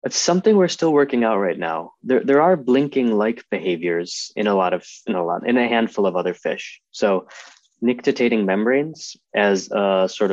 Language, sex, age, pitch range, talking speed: English, male, 20-39, 95-120 Hz, 185 wpm